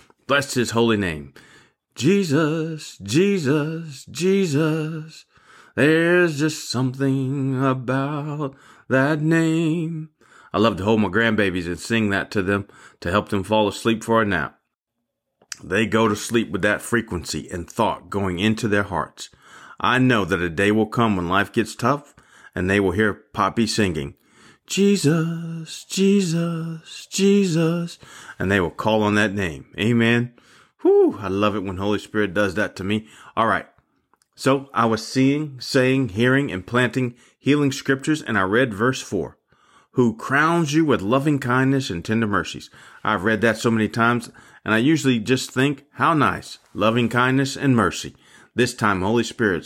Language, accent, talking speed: English, American, 155 wpm